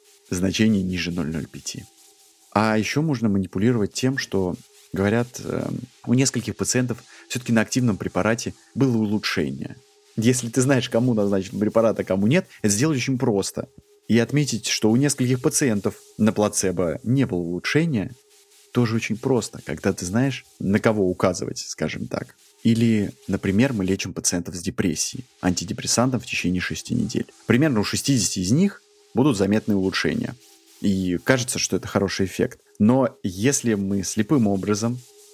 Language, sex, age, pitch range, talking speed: Russian, male, 30-49, 95-130 Hz, 145 wpm